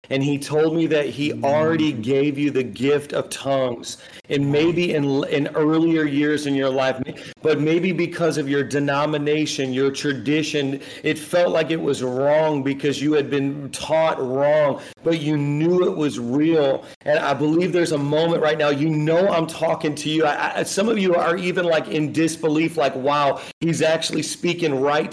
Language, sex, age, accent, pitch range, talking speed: English, male, 40-59, American, 150-170 Hz, 185 wpm